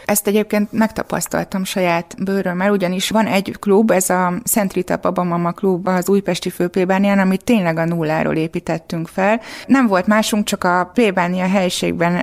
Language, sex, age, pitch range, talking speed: Hungarian, female, 20-39, 180-205 Hz, 160 wpm